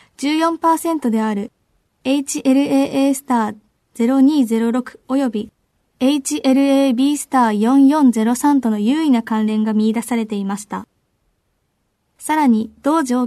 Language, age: Japanese, 20-39